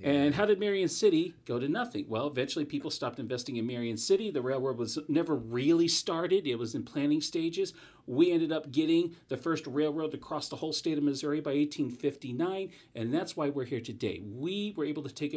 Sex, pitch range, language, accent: male, 125-165 Hz, English, American